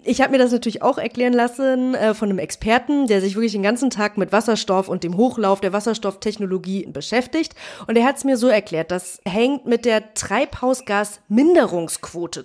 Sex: female